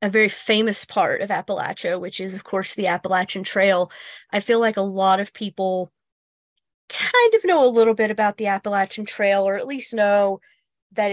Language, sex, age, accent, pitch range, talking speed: English, female, 30-49, American, 190-230 Hz, 190 wpm